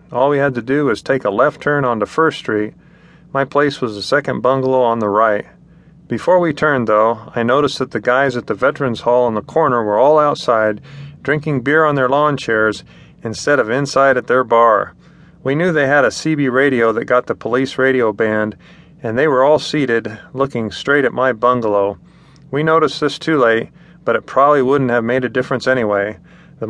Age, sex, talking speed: 40-59, male, 205 wpm